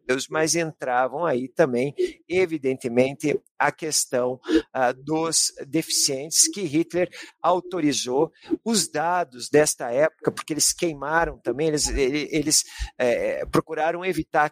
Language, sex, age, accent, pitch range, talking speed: Portuguese, male, 50-69, Brazilian, 150-220 Hz, 105 wpm